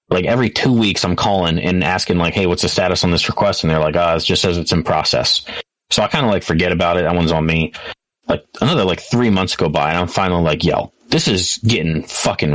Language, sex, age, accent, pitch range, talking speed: English, male, 30-49, American, 85-100 Hz, 265 wpm